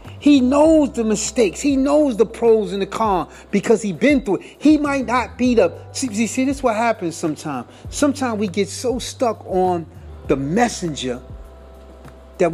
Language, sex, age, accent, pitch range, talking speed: English, male, 30-49, American, 160-260 Hz, 185 wpm